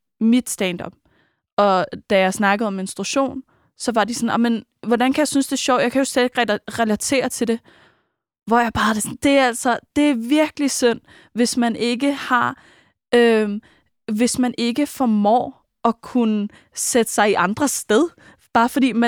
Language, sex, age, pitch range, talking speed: Danish, female, 20-39, 220-265 Hz, 175 wpm